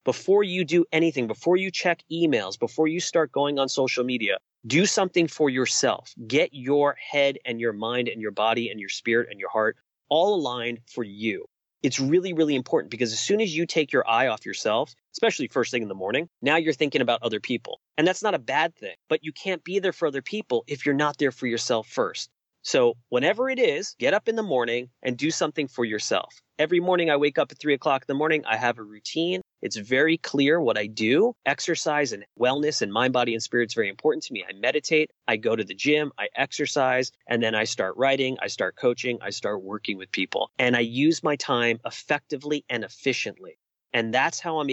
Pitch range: 120-160 Hz